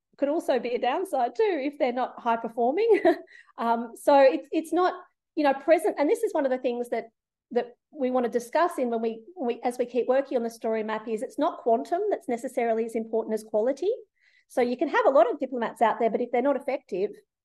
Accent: Australian